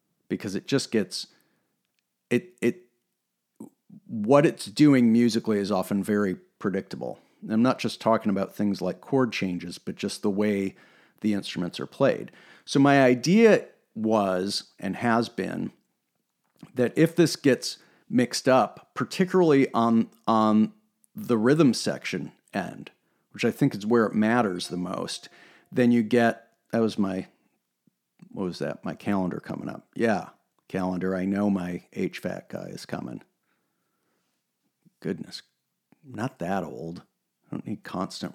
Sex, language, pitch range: male, English, 105-150 Hz